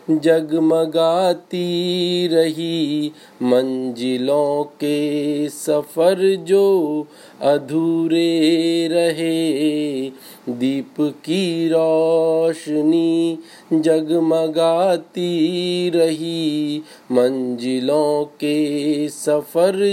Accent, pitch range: native, 150-170 Hz